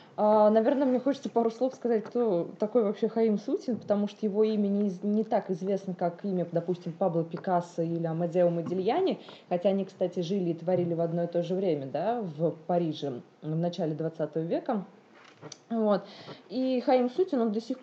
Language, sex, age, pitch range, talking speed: Russian, female, 20-39, 180-220 Hz, 165 wpm